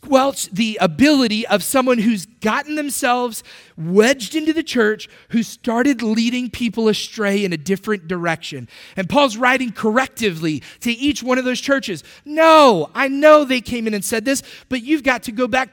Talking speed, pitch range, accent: 175 wpm, 175-245 Hz, American